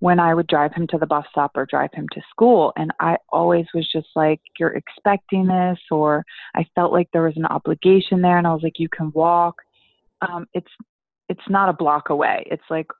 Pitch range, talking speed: 155-185 Hz, 220 wpm